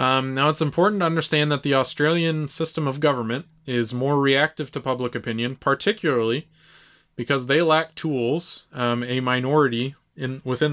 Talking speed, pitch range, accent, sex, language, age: 155 wpm, 120-155 Hz, American, male, English, 20-39